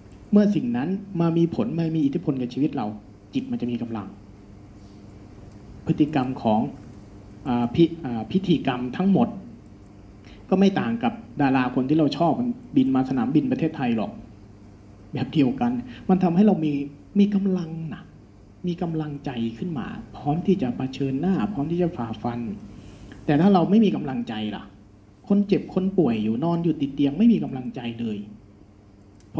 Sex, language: male, Thai